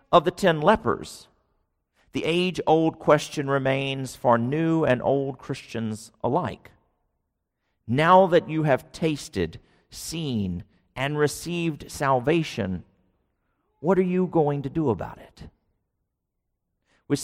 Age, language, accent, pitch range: 50-69, English, American, 110-160 Hz